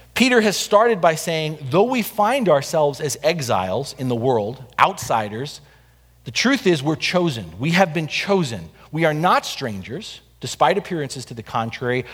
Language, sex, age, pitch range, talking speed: English, male, 40-59, 130-185 Hz, 165 wpm